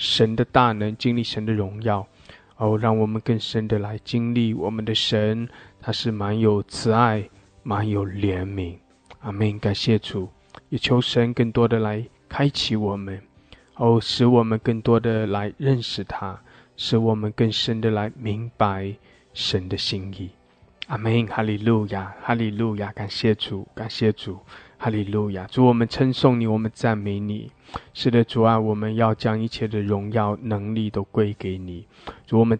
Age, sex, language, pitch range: 20-39, male, English, 100-115 Hz